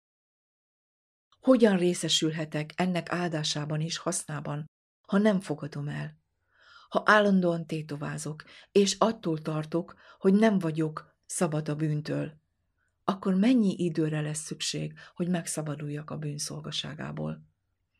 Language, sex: Hungarian, female